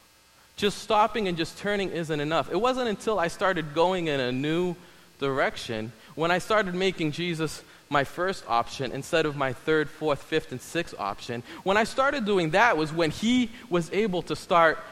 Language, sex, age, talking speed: English, male, 20-39, 185 wpm